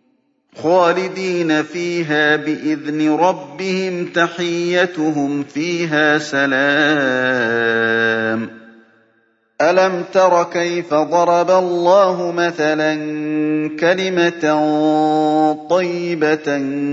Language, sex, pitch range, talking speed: Arabic, male, 140-175 Hz, 55 wpm